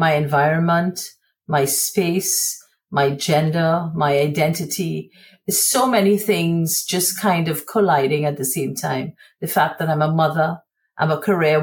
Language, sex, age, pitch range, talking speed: English, female, 50-69, 150-195 Hz, 145 wpm